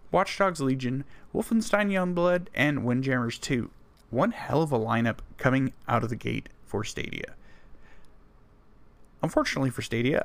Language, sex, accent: English, male, American